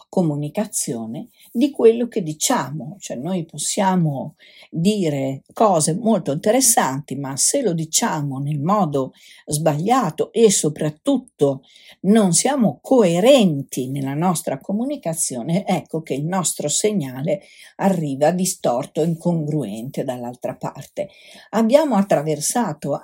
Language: Italian